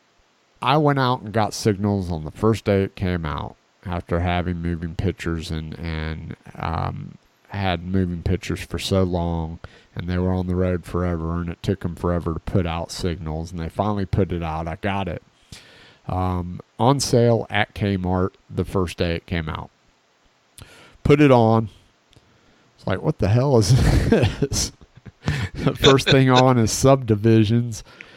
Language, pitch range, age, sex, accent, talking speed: English, 85-100 Hz, 40-59, male, American, 165 wpm